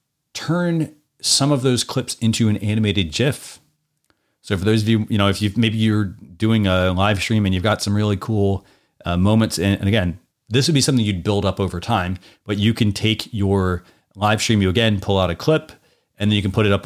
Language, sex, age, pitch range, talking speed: English, male, 30-49, 95-115 Hz, 225 wpm